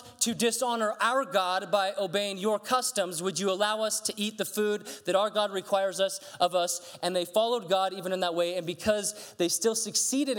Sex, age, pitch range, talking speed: male, 30-49, 165-210 Hz, 210 wpm